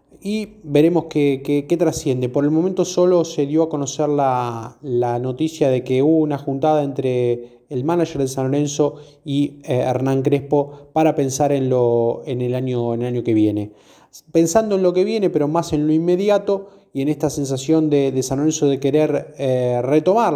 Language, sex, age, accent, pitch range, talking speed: Spanish, male, 20-39, Argentinian, 135-165 Hz, 185 wpm